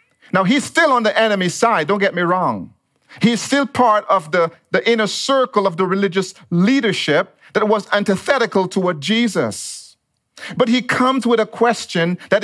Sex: male